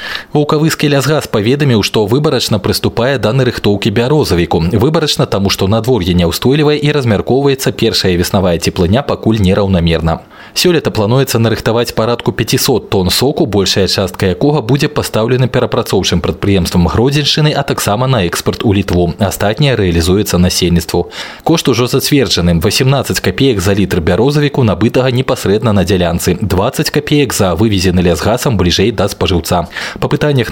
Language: Russian